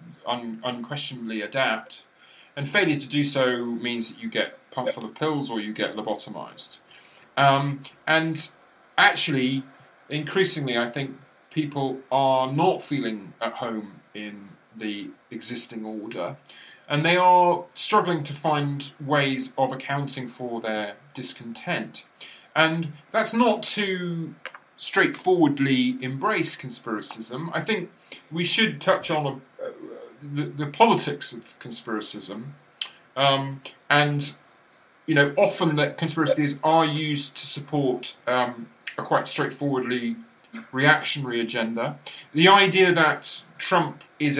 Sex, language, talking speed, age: male, English, 120 wpm, 30-49